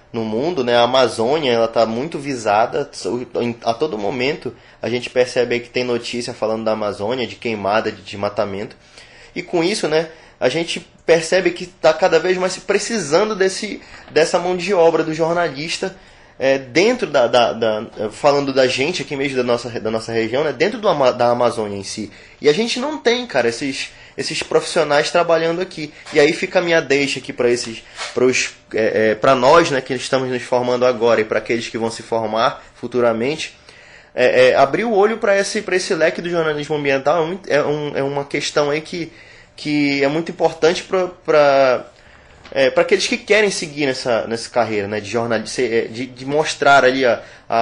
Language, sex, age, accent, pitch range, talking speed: Portuguese, male, 20-39, Brazilian, 120-165 Hz, 185 wpm